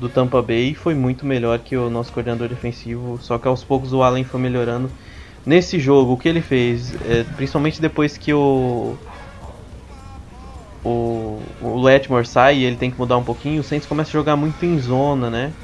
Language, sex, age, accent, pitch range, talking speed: Portuguese, male, 20-39, Brazilian, 120-140 Hz, 190 wpm